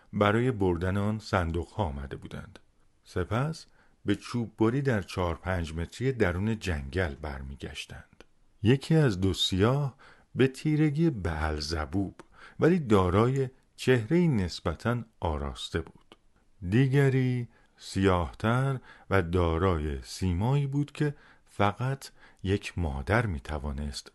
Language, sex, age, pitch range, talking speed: Persian, male, 50-69, 85-120 Hz, 105 wpm